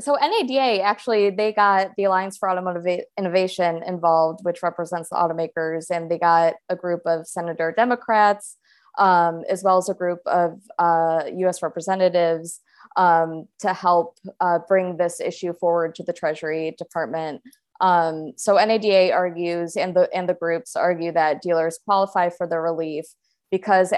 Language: English